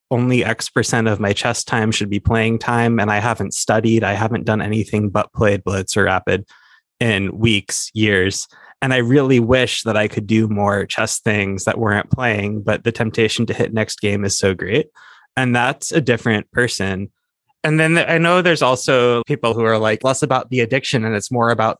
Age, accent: 20-39, American